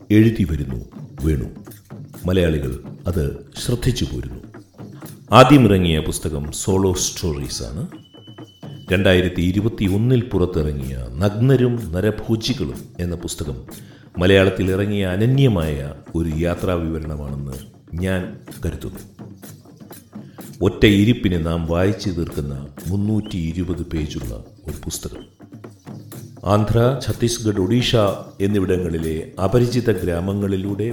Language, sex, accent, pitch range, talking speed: Malayalam, male, native, 80-110 Hz, 80 wpm